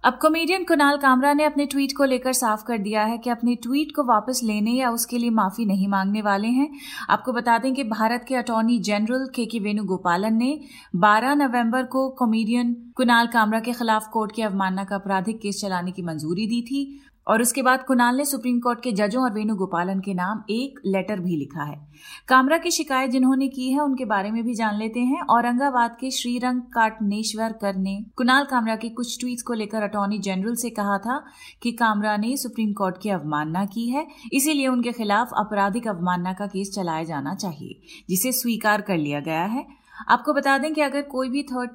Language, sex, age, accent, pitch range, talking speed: Hindi, female, 30-49, native, 200-255 Hz, 200 wpm